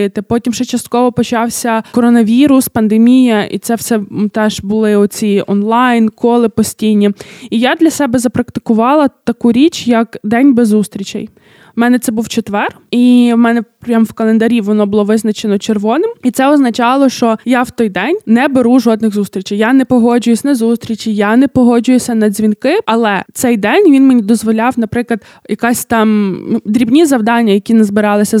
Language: Ukrainian